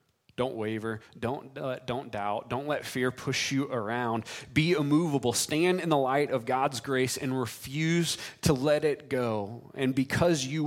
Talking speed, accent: 170 wpm, American